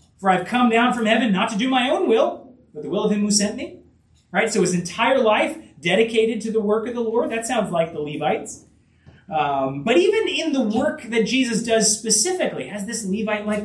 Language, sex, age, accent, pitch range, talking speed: English, male, 30-49, American, 195-255 Hz, 225 wpm